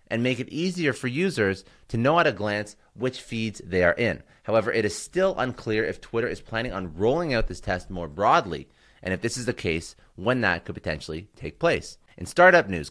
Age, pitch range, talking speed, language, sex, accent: 30-49, 90-115 Hz, 220 wpm, English, male, American